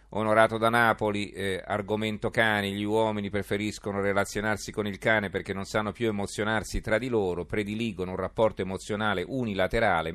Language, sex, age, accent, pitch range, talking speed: Italian, male, 40-59, native, 90-105 Hz, 155 wpm